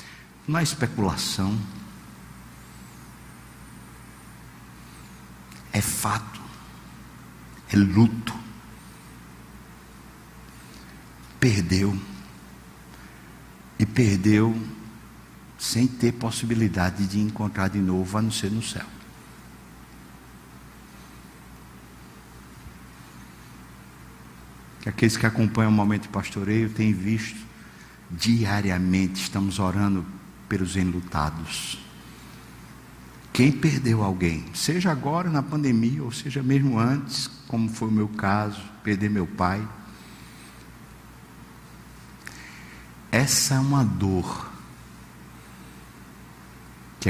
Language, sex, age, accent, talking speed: Portuguese, male, 60-79, Brazilian, 75 wpm